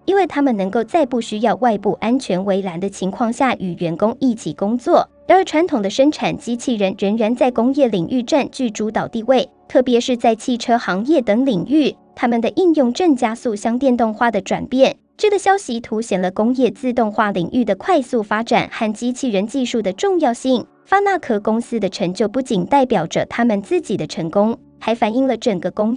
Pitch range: 205-265 Hz